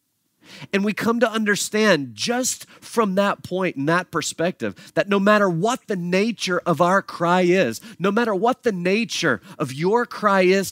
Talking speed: 175 wpm